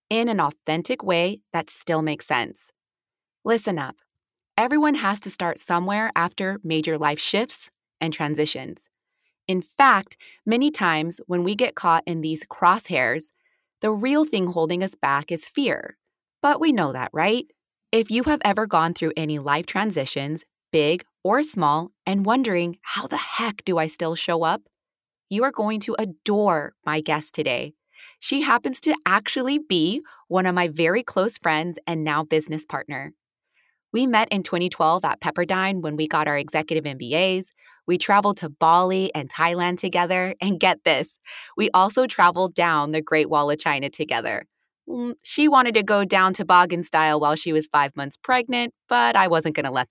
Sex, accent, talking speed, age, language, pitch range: female, American, 170 wpm, 20-39, English, 160-220 Hz